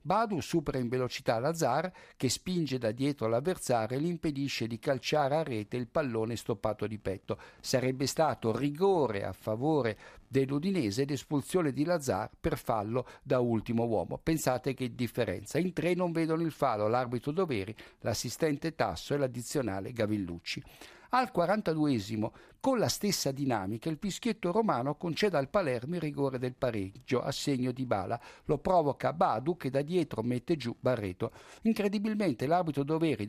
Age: 60-79